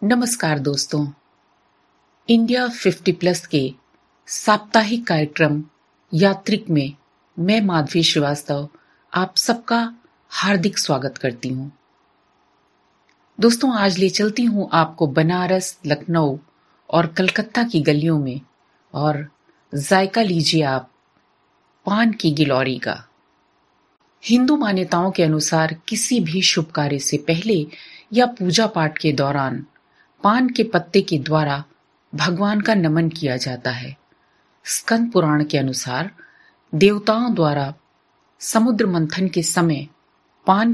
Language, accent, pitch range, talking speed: Hindi, native, 145-205 Hz, 115 wpm